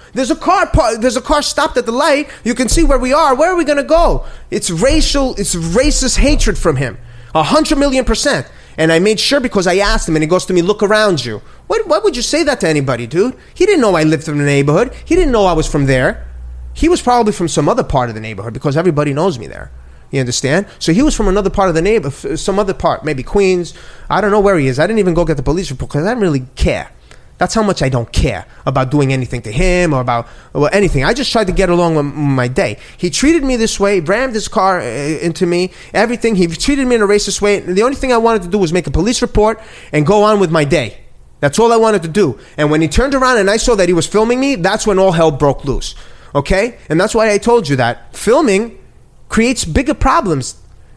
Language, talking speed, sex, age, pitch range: English, 260 wpm, male, 30-49, 150-235 Hz